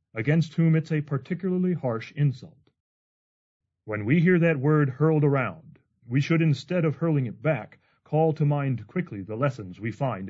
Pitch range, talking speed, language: 115-150 Hz, 170 wpm, English